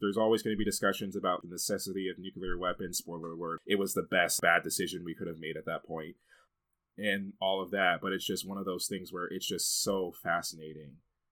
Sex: male